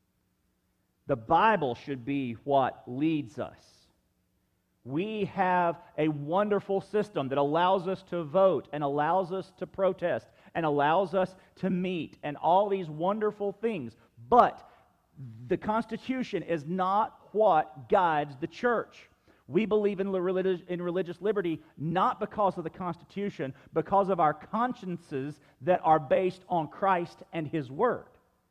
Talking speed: 135 wpm